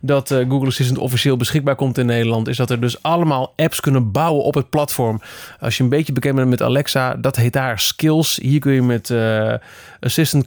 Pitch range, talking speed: 120-155 Hz, 210 wpm